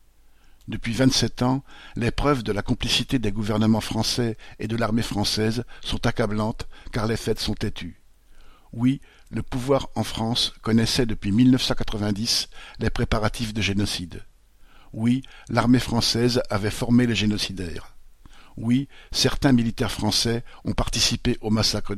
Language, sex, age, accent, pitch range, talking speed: French, male, 50-69, French, 105-120 Hz, 135 wpm